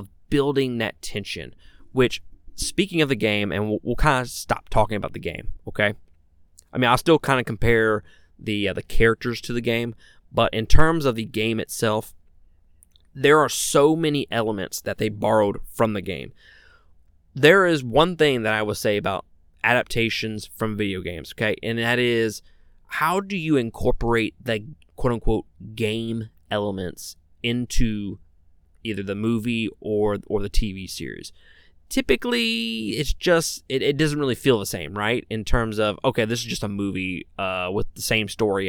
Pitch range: 95-125 Hz